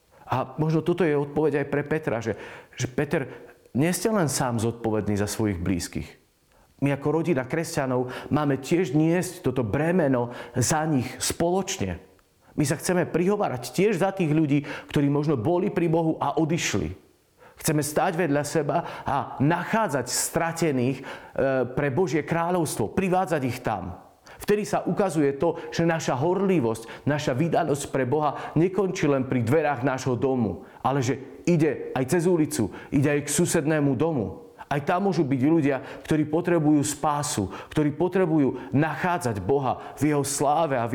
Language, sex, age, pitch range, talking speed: Slovak, male, 40-59, 125-165 Hz, 150 wpm